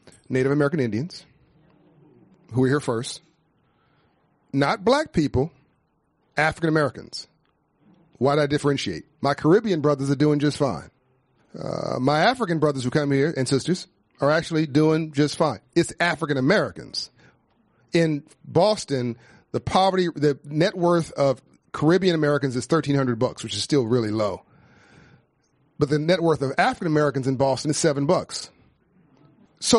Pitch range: 135-170 Hz